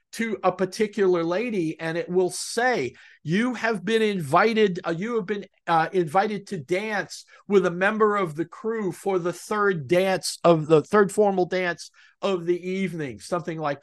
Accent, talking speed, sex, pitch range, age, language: American, 175 wpm, male, 175-215 Hz, 50-69, English